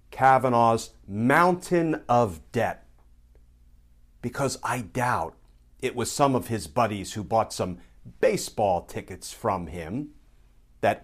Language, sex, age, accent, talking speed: English, male, 50-69, American, 115 wpm